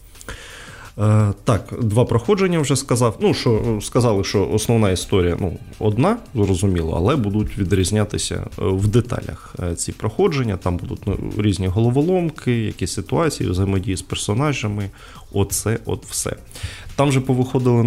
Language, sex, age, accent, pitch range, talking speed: Ukrainian, male, 20-39, native, 100-125 Hz, 125 wpm